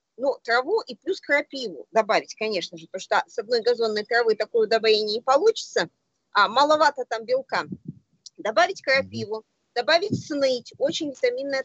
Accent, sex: native, female